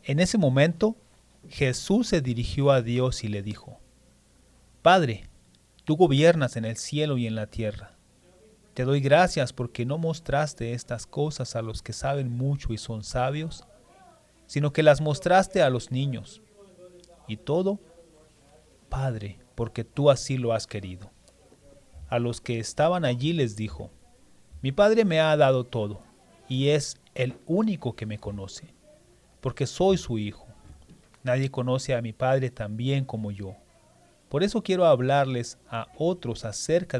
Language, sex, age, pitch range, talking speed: English, male, 40-59, 115-150 Hz, 150 wpm